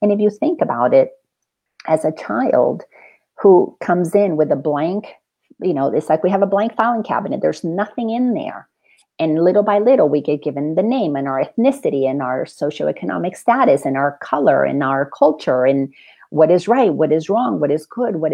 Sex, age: female, 50-69